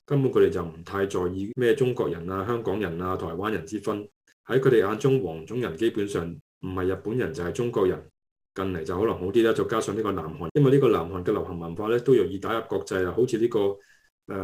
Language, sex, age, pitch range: Chinese, male, 20-39, 90-125 Hz